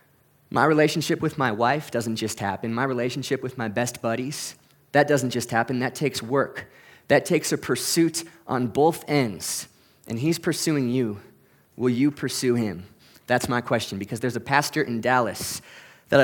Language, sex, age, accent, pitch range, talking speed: English, male, 20-39, American, 120-150 Hz, 170 wpm